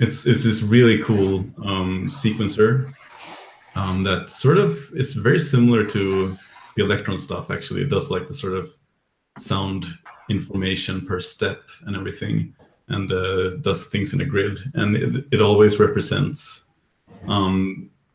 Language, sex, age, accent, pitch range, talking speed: English, male, 30-49, Norwegian, 95-115 Hz, 145 wpm